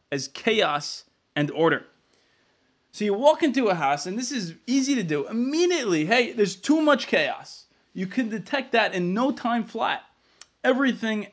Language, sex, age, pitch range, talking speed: English, male, 20-39, 165-245 Hz, 165 wpm